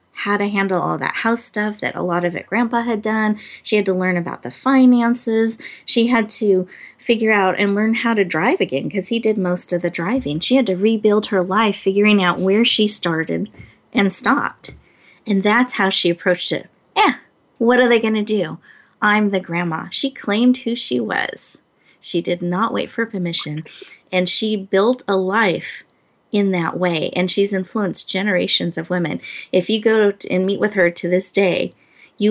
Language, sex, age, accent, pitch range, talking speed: English, female, 30-49, American, 180-225 Hz, 195 wpm